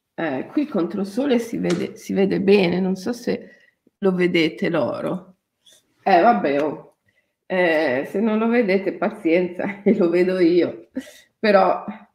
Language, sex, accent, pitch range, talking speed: Italian, female, native, 180-220 Hz, 150 wpm